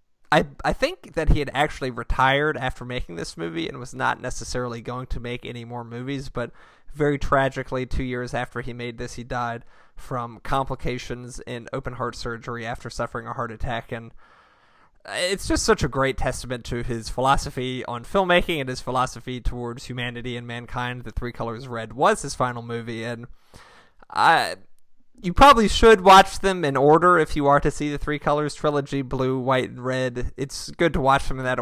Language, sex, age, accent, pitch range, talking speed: English, male, 20-39, American, 120-140 Hz, 190 wpm